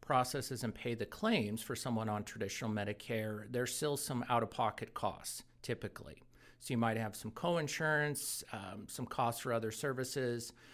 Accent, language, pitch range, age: American, English, 110-130 Hz, 50-69